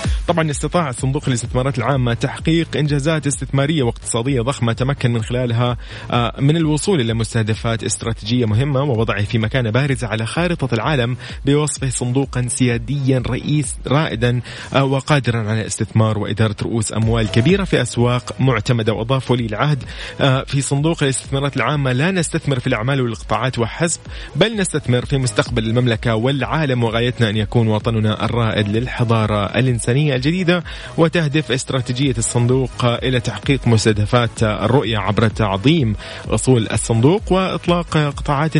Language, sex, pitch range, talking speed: Arabic, male, 110-140 Hz, 125 wpm